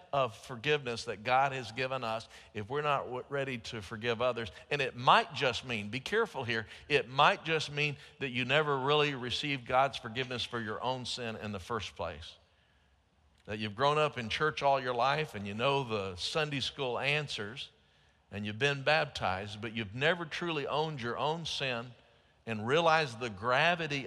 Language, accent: English, American